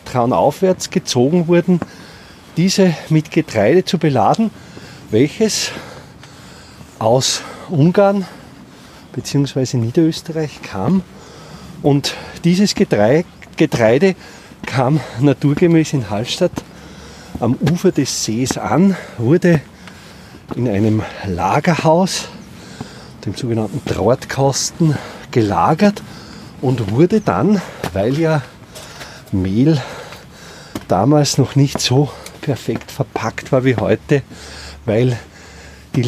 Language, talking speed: German, 85 wpm